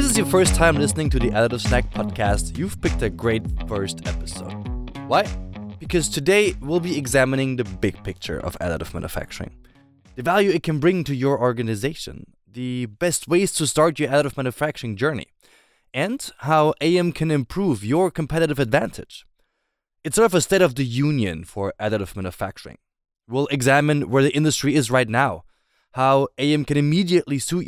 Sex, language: male, English